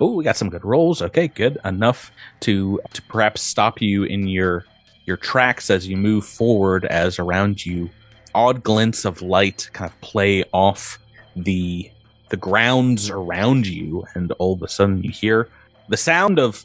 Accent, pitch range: American, 95-110 Hz